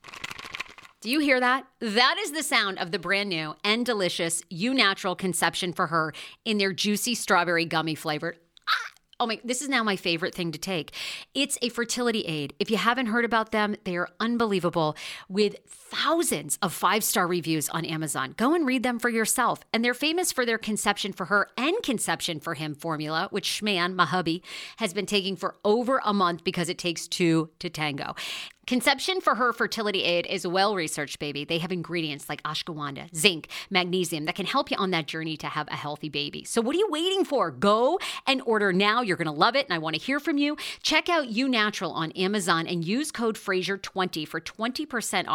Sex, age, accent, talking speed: female, 40-59, American, 200 wpm